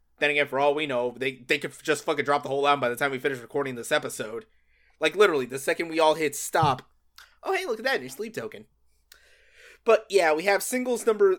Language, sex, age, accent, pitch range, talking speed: English, male, 20-39, American, 140-205 Hz, 235 wpm